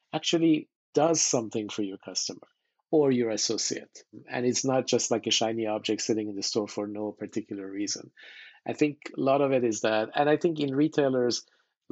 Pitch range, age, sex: 110-135 Hz, 50-69, male